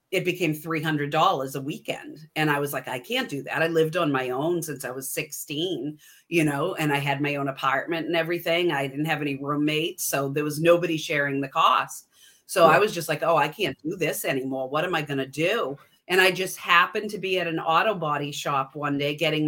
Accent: American